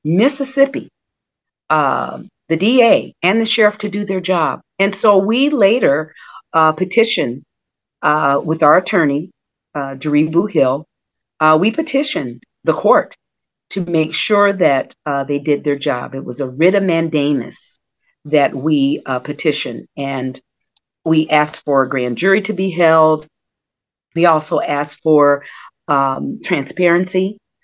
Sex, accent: female, American